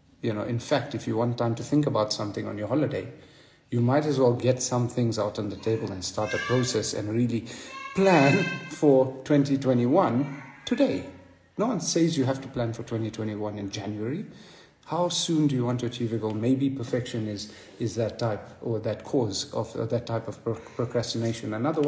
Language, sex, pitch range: English, male, 115-140 Hz